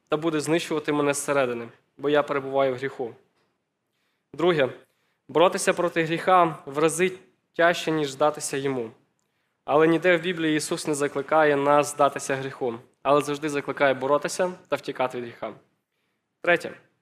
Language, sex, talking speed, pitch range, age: Ukrainian, male, 140 wpm, 135-165 Hz, 20-39